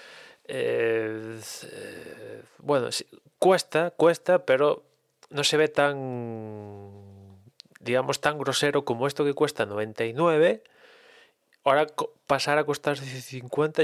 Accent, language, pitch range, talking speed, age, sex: Spanish, Spanish, 110-145 Hz, 95 wpm, 20-39, male